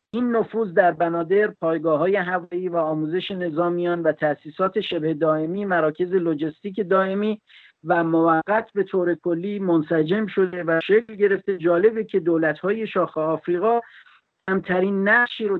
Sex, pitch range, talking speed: male, 160-200 Hz, 135 wpm